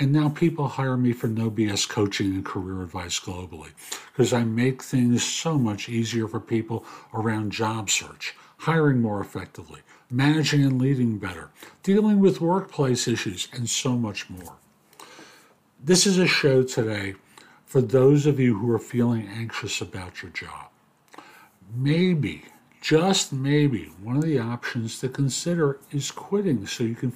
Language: English